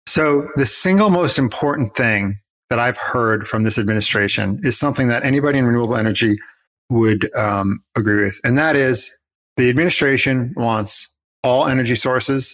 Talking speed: 155 wpm